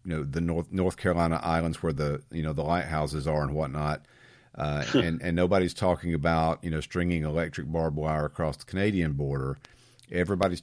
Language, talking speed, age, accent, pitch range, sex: English, 185 wpm, 50-69, American, 75-95 Hz, male